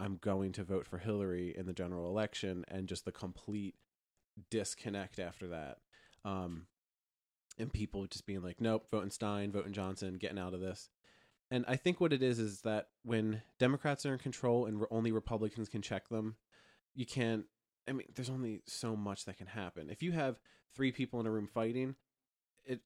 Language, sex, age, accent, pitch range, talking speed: English, male, 20-39, American, 90-110 Hz, 190 wpm